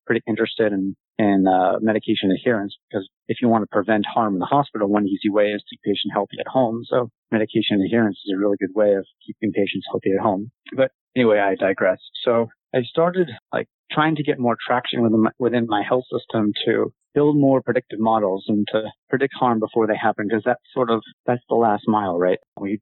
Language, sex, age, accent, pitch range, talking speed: English, male, 30-49, American, 105-125 Hz, 215 wpm